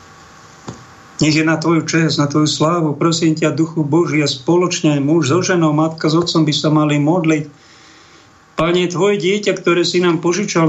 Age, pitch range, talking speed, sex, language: 50-69, 145-170 Hz, 175 wpm, male, Slovak